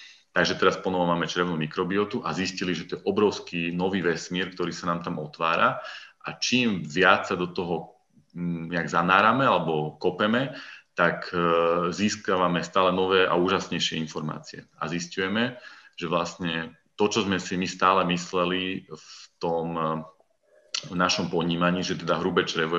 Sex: male